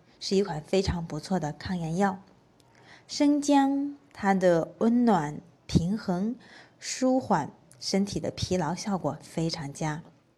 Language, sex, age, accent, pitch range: Chinese, female, 20-39, native, 160-215 Hz